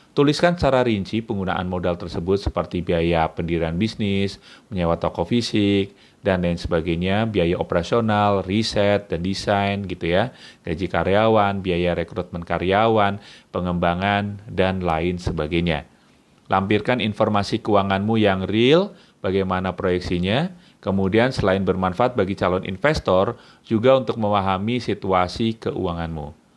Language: Indonesian